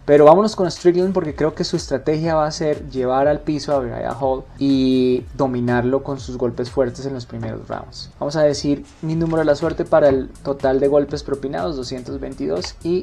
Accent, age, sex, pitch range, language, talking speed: Colombian, 20-39, male, 135-170 Hz, Spanish, 205 wpm